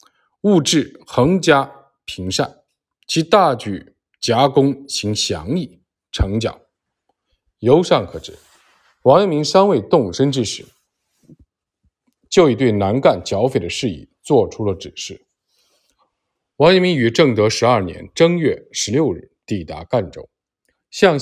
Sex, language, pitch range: male, Chinese, 105-145 Hz